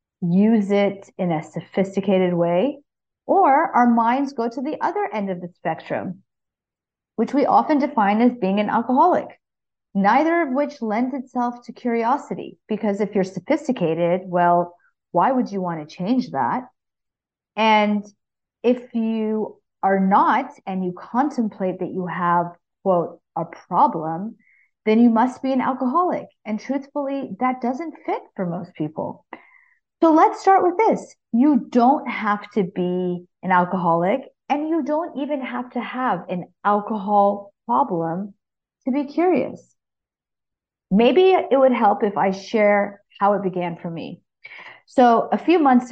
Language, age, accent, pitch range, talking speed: English, 40-59, American, 185-265 Hz, 145 wpm